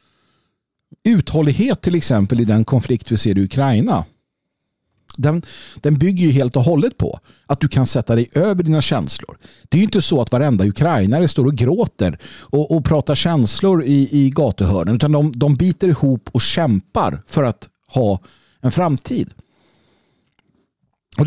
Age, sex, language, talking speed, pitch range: 50-69, male, Swedish, 160 wpm, 115-165 Hz